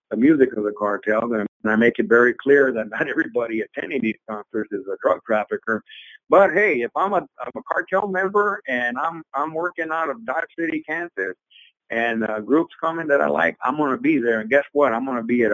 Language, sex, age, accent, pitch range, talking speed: English, male, 50-69, American, 110-145 Hz, 225 wpm